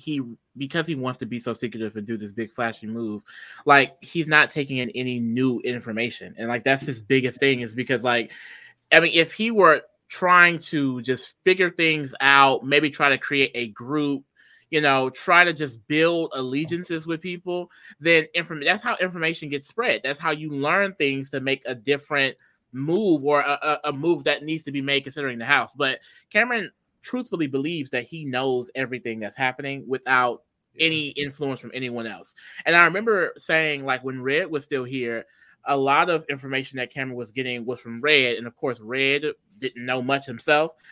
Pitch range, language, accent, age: 130-165 Hz, English, American, 20-39